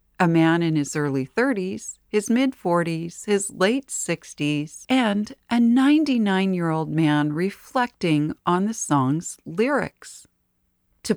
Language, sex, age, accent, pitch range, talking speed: English, female, 40-59, American, 160-230 Hz, 130 wpm